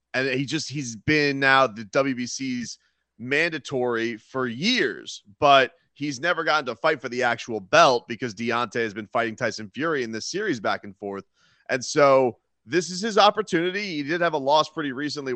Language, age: English, 30-49